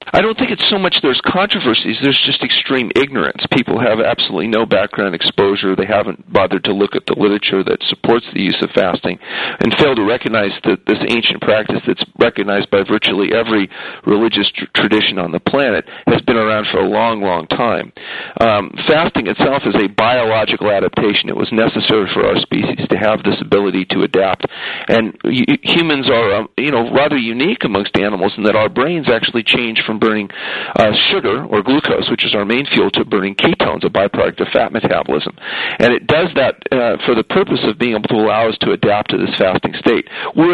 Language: English